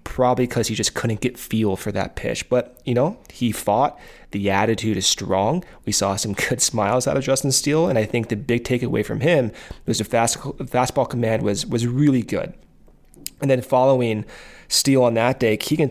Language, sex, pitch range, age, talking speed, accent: English, male, 110-135 Hz, 20-39, 200 wpm, American